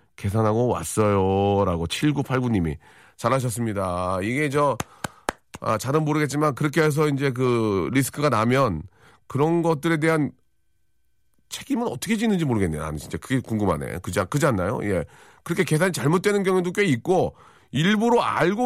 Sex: male